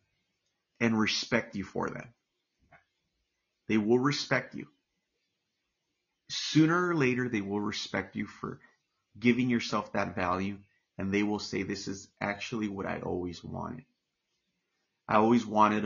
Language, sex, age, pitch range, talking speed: English, male, 30-49, 100-135 Hz, 130 wpm